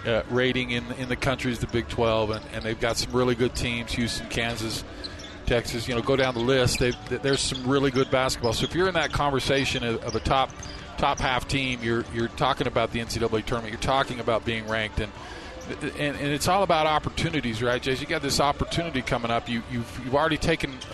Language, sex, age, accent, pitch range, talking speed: English, male, 40-59, American, 115-140 Hz, 220 wpm